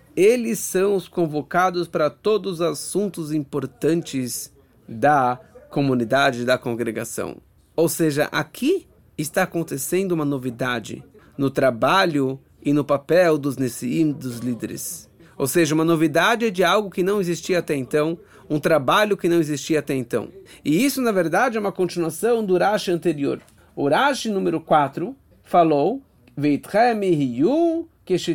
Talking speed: 130 wpm